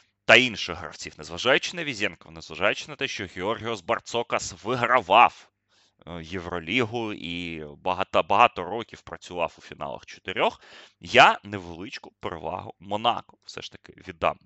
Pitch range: 90-115 Hz